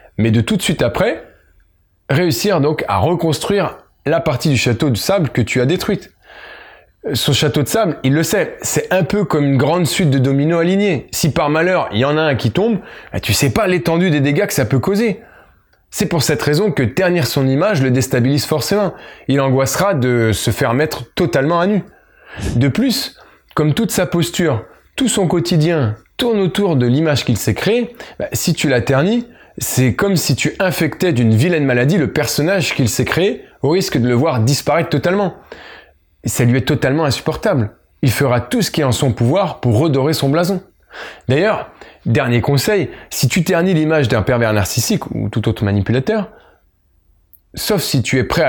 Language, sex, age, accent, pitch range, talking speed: French, male, 20-39, French, 120-175 Hz, 195 wpm